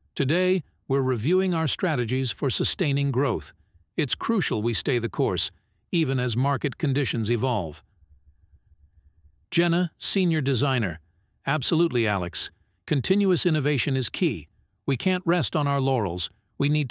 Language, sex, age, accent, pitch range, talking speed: English, male, 50-69, American, 105-155 Hz, 130 wpm